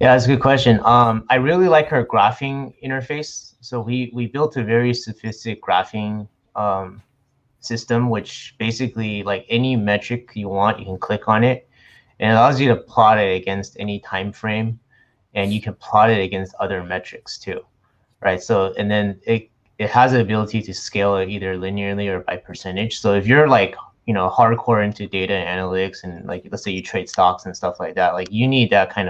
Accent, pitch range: American, 95-115 Hz